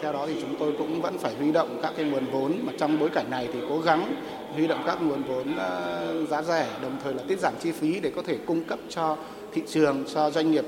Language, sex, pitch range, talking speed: Vietnamese, male, 140-165 Hz, 265 wpm